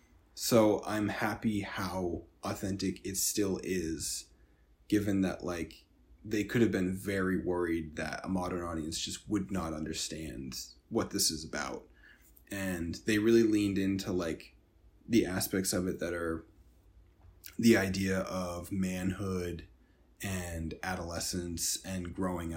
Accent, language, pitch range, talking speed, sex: American, English, 85-100 Hz, 130 wpm, male